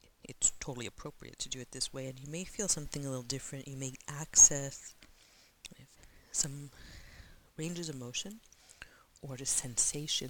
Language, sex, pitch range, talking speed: English, female, 115-145 Hz, 150 wpm